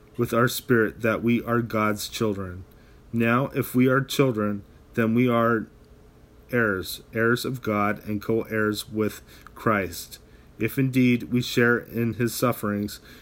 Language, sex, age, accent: English, male, 30-49, American